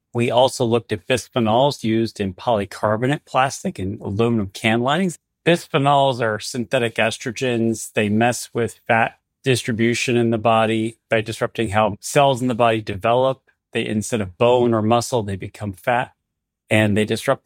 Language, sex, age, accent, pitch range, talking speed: English, male, 40-59, American, 110-130 Hz, 155 wpm